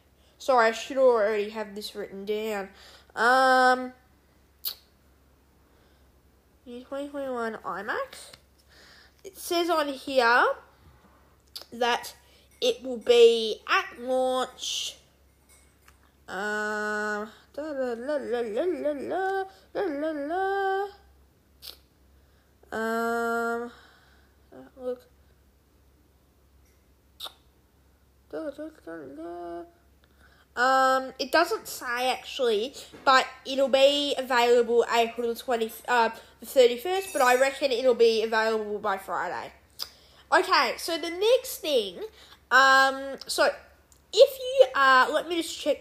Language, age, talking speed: English, 10-29, 85 wpm